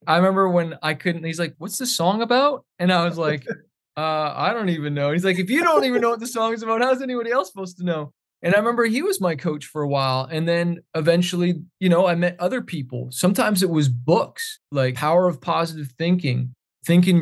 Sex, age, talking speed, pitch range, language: male, 20-39, 235 wpm, 140-180 Hz, English